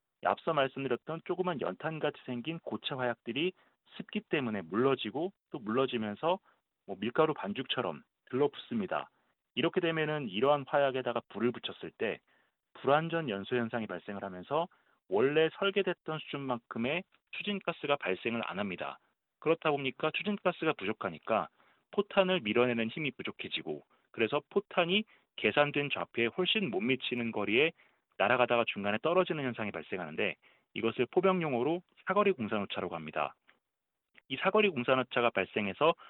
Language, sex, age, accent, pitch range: Korean, male, 40-59, native, 115-165 Hz